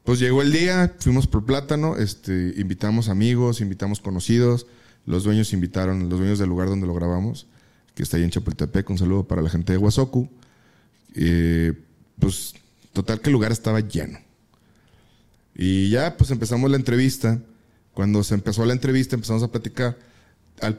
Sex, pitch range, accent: male, 100-125 Hz, Mexican